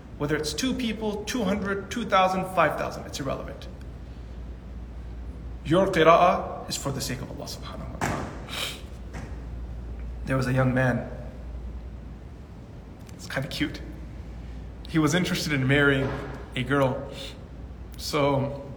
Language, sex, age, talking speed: English, male, 20-39, 130 wpm